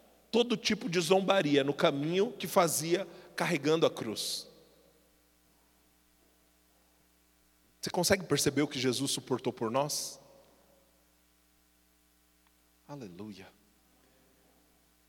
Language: Portuguese